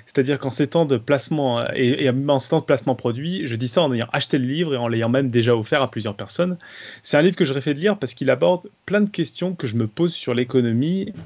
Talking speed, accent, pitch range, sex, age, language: 235 wpm, French, 120-155 Hz, male, 30-49, French